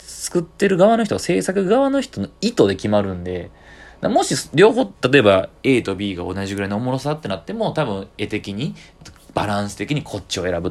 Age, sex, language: 20-39, male, Japanese